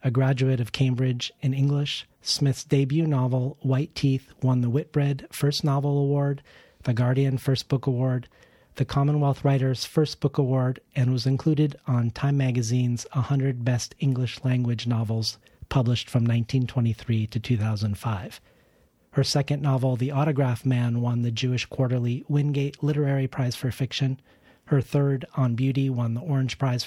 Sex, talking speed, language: male, 150 wpm, English